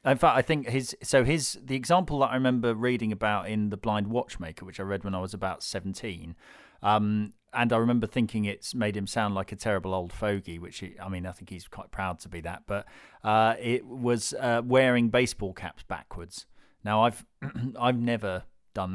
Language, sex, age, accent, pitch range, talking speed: English, male, 40-59, British, 105-125 Hz, 210 wpm